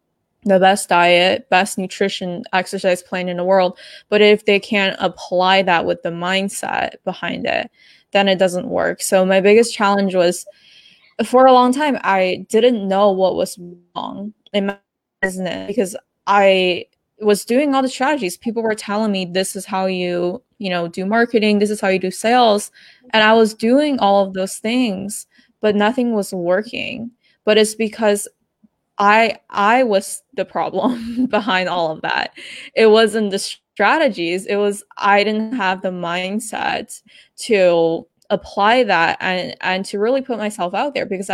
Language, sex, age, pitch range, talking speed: English, female, 20-39, 180-215 Hz, 165 wpm